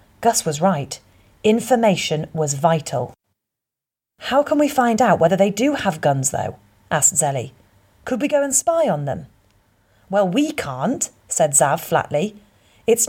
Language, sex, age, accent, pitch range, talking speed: English, female, 40-59, British, 150-225 Hz, 150 wpm